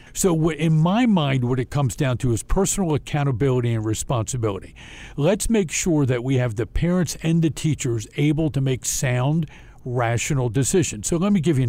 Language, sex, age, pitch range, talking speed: English, male, 50-69, 120-155 Hz, 185 wpm